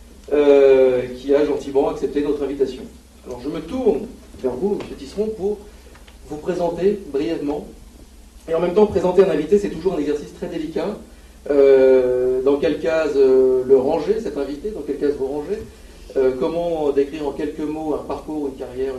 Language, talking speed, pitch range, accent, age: French, 175 wpm, 130-195 Hz, French, 40-59